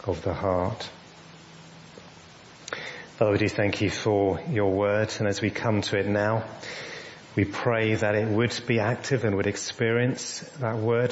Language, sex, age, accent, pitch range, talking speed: English, male, 30-49, British, 100-120 Hz, 160 wpm